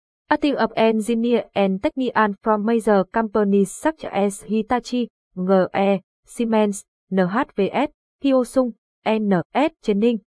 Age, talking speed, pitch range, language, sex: 20-39, 100 wpm, 195-240 Hz, English, female